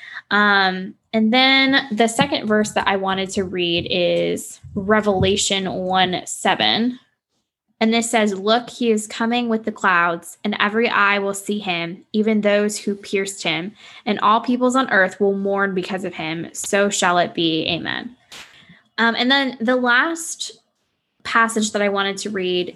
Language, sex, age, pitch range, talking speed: English, female, 10-29, 185-225 Hz, 165 wpm